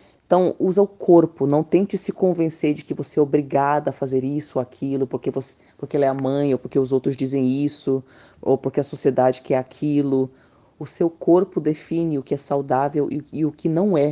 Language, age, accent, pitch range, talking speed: Portuguese, 20-39, Brazilian, 135-175 Hz, 210 wpm